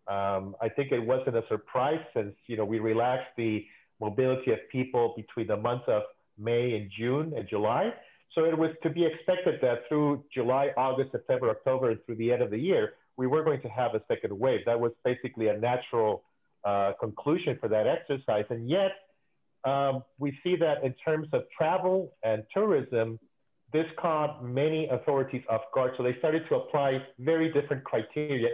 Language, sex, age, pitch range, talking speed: English, male, 40-59, 120-155 Hz, 185 wpm